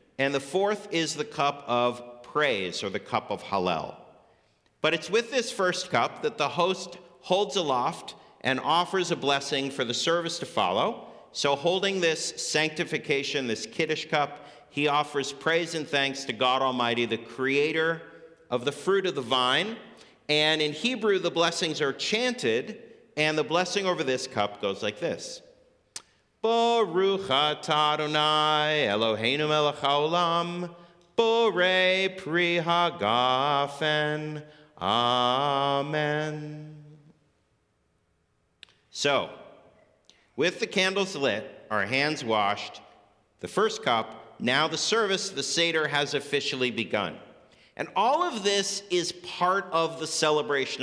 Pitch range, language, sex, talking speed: 135-175 Hz, English, male, 120 wpm